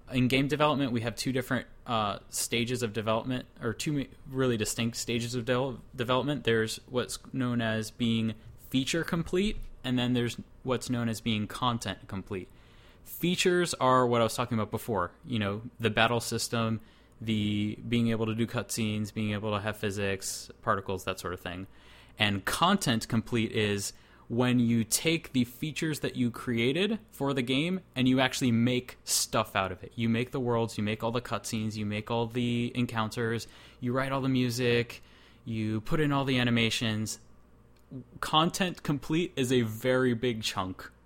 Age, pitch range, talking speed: 20-39, 110-130 Hz, 175 wpm